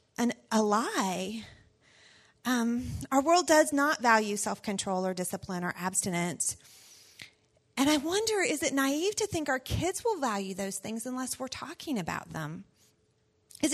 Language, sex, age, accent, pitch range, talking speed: English, female, 30-49, American, 185-280 Hz, 145 wpm